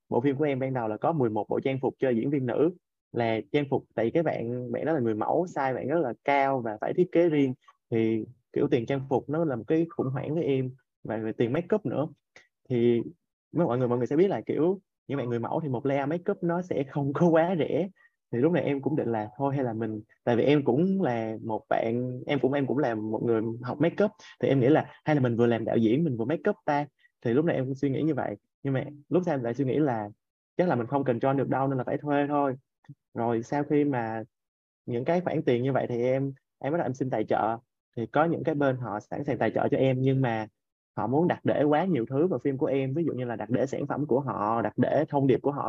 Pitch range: 115-150 Hz